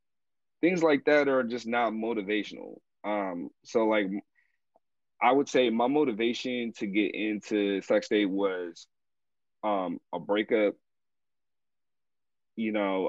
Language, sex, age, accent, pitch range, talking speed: English, male, 20-39, American, 105-125 Hz, 120 wpm